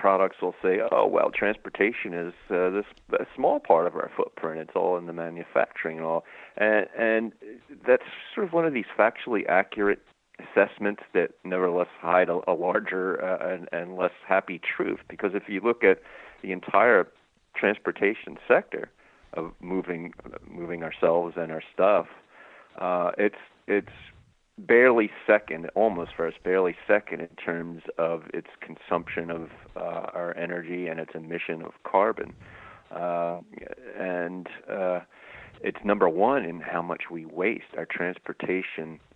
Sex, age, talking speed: male, 40-59, 150 wpm